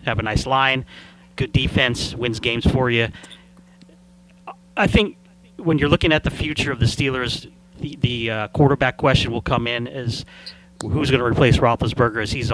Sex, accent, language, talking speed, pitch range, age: male, American, English, 175 wpm, 115-135 Hz, 30-49